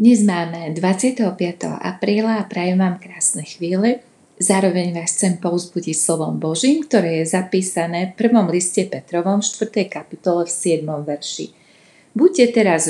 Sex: female